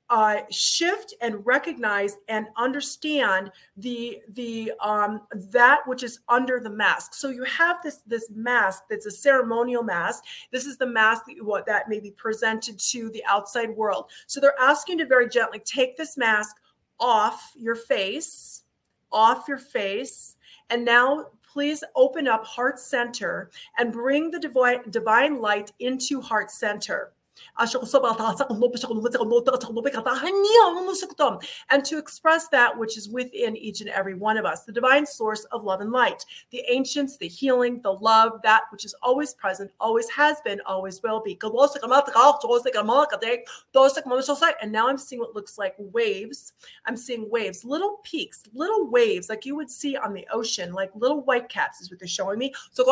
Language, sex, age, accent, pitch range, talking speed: English, female, 40-59, American, 220-280 Hz, 155 wpm